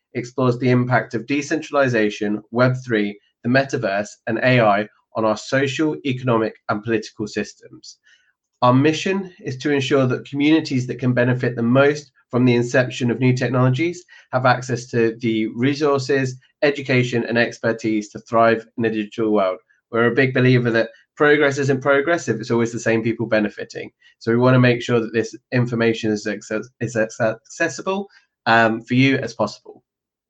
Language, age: English, 20-39